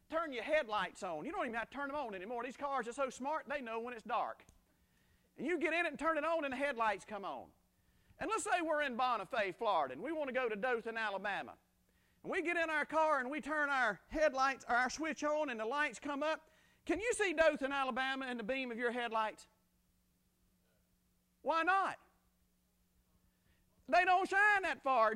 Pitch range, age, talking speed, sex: 260-340 Hz, 40-59, 215 wpm, male